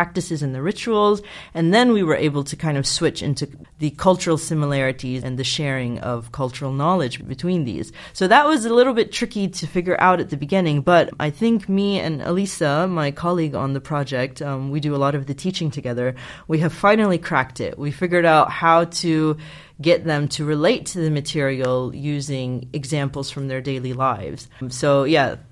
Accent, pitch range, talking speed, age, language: American, 135-175 Hz, 195 wpm, 30-49, English